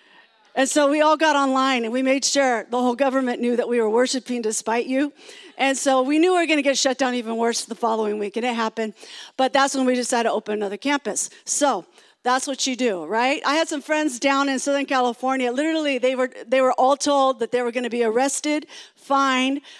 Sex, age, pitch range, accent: female, 40-59, 255-320 Hz, American